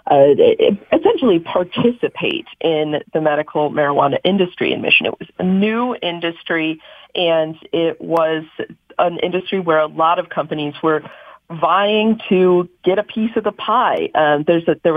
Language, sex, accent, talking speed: English, female, American, 155 wpm